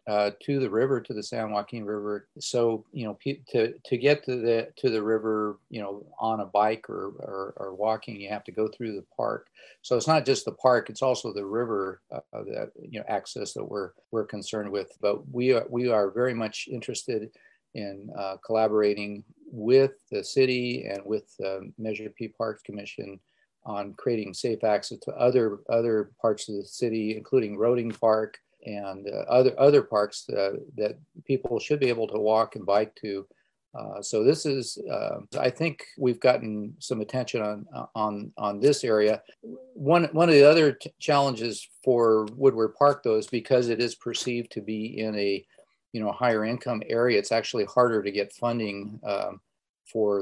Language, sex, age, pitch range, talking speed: English, male, 40-59, 105-125 Hz, 190 wpm